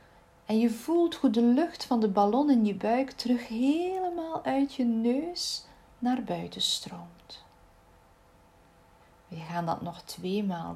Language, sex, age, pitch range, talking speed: Dutch, female, 40-59, 180-250 Hz, 145 wpm